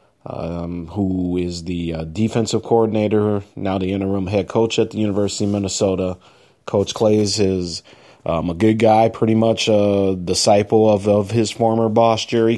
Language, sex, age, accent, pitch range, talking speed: English, male, 30-49, American, 100-115 Hz, 160 wpm